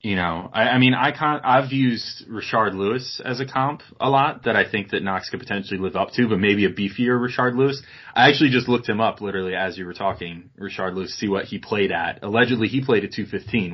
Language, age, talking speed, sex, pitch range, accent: English, 20-39, 245 wpm, male, 95-115 Hz, American